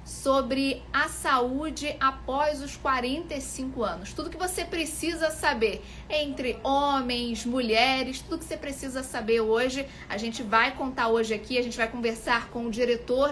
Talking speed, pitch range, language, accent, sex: 155 wpm, 220-275 Hz, Portuguese, Brazilian, female